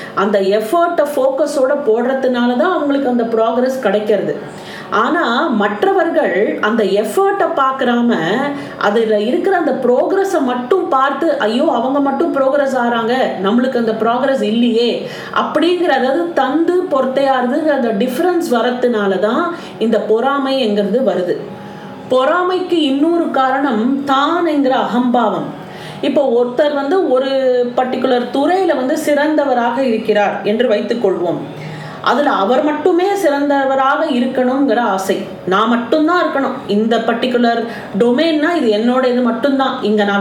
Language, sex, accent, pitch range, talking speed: Tamil, female, native, 220-285 Hz, 110 wpm